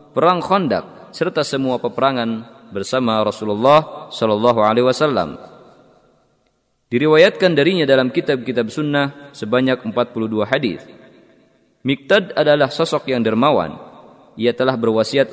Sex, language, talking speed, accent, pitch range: male, Indonesian, 100 wpm, native, 115-145 Hz